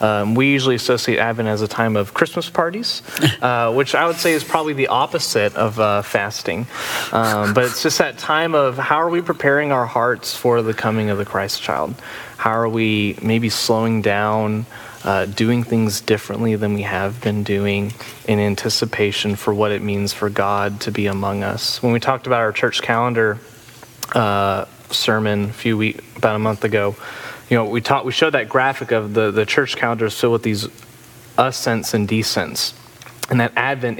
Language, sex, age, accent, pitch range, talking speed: English, male, 20-39, American, 105-120 Hz, 190 wpm